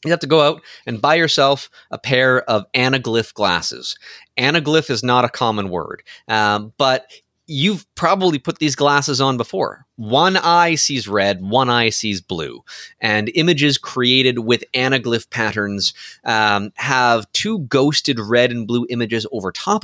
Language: English